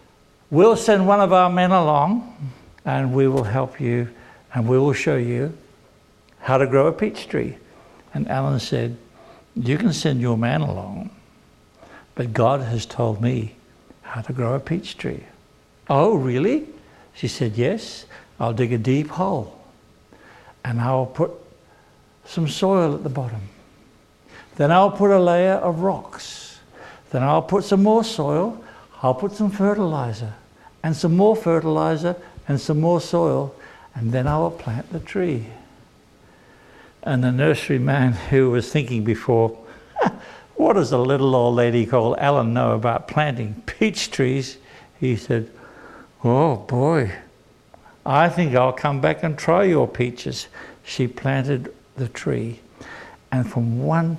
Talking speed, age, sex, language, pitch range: 145 wpm, 60-79, male, English, 120-165 Hz